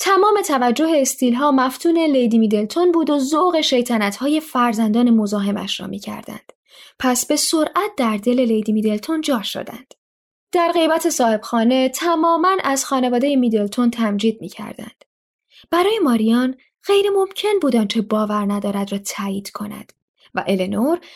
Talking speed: 125 wpm